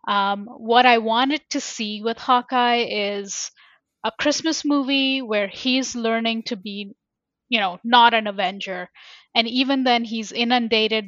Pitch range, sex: 210-245 Hz, female